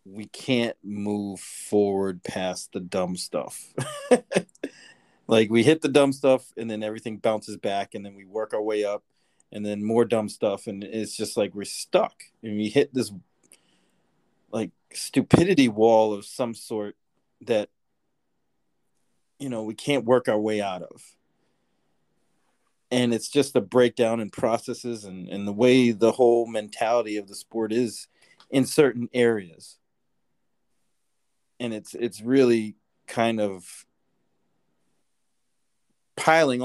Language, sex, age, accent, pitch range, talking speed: English, male, 40-59, American, 100-125 Hz, 140 wpm